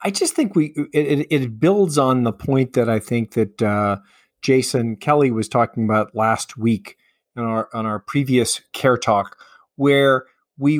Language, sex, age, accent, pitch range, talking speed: English, male, 50-69, American, 115-140 Hz, 170 wpm